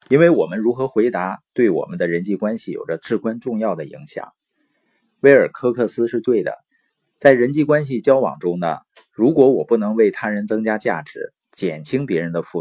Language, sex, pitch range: Chinese, male, 105-140 Hz